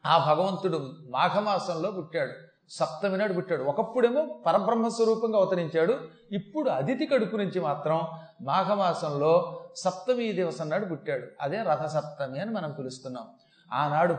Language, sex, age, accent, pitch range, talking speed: Telugu, male, 30-49, native, 155-210 Hz, 110 wpm